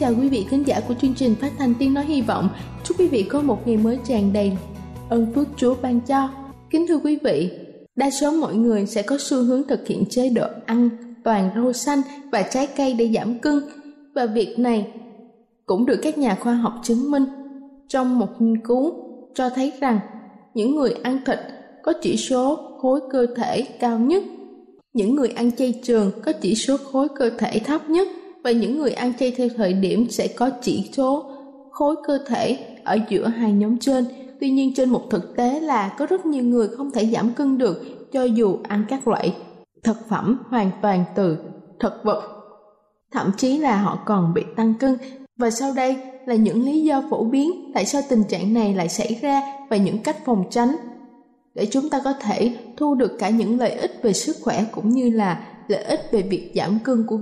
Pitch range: 220-275 Hz